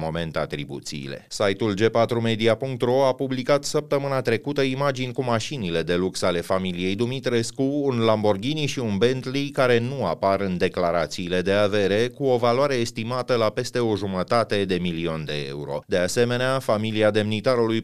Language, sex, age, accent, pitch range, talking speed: Romanian, male, 30-49, native, 100-125 Hz, 150 wpm